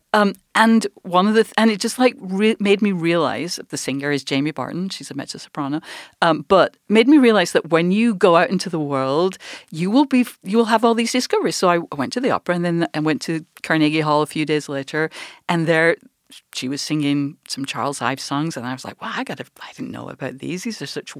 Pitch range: 155-225 Hz